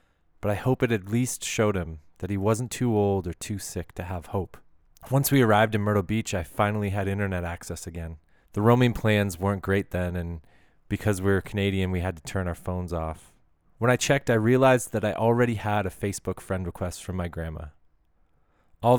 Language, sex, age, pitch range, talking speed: English, male, 20-39, 90-110 Hz, 210 wpm